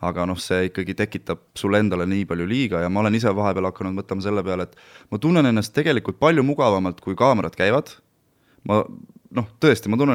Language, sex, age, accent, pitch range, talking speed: English, male, 20-39, Finnish, 95-130 Hz, 200 wpm